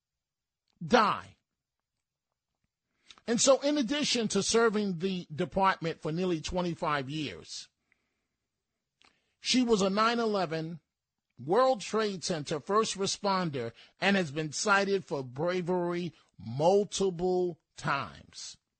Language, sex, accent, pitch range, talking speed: English, male, American, 160-205 Hz, 100 wpm